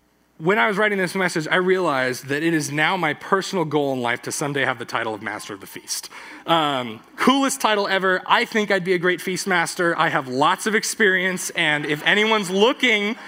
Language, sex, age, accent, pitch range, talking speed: English, male, 20-39, American, 130-195 Hz, 215 wpm